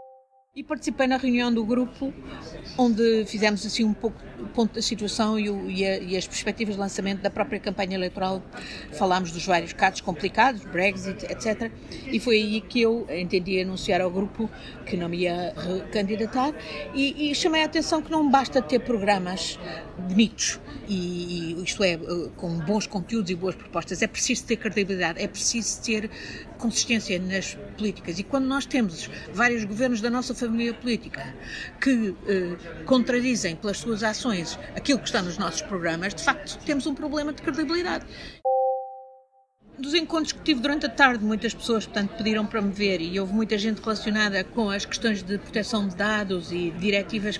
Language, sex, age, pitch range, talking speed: Portuguese, female, 50-69, 190-235 Hz, 170 wpm